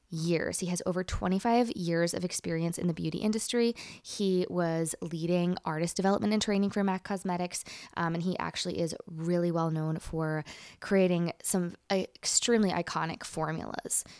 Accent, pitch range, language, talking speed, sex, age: American, 165-195 Hz, English, 150 wpm, female, 20-39